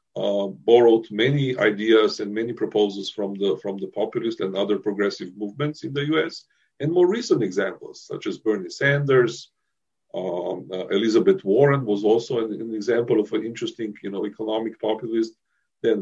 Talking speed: 155 wpm